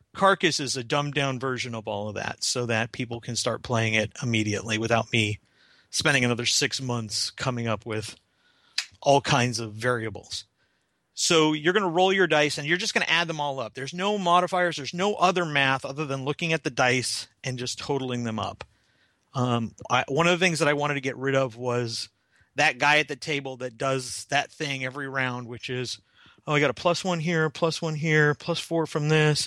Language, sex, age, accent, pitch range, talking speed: English, male, 30-49, American, 125-165 Hz, 210 wpm